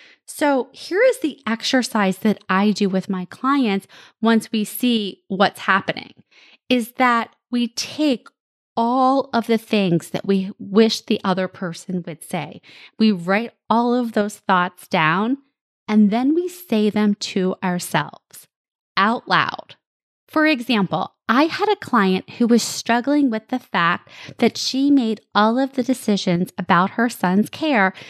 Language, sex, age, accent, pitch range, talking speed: English, female, 20-39, American, 190-245 Hz, 150 wpm